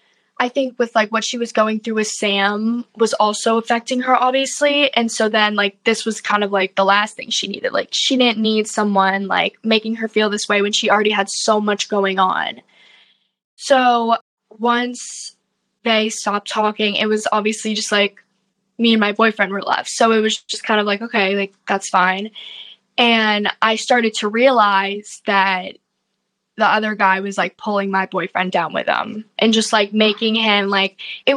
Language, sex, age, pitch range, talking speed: English, female, 10-29, 205-225 Hz, 190 wpm